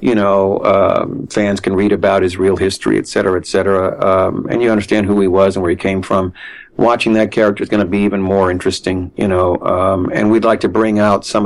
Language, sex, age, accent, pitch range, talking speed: English, male, 50-69, American, 100-150 Hz, 250 wpm